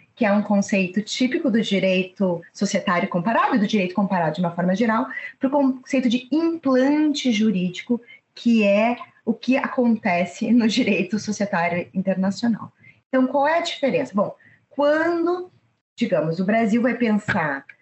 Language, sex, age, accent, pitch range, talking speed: Portuguese, female, 20-39, Brazilian, 195-260 Hz, 145 wpm